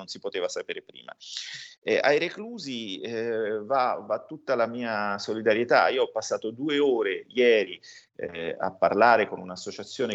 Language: Italian